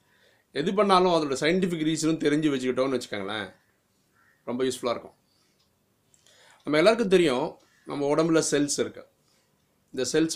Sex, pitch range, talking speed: male, 130-165 Hz, 115 wpm